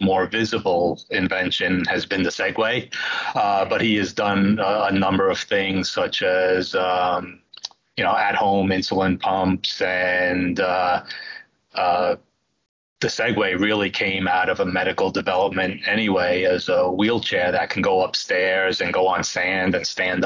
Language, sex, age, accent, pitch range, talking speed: English, male, 30-49, American, 95-115 Hz, 150 wpm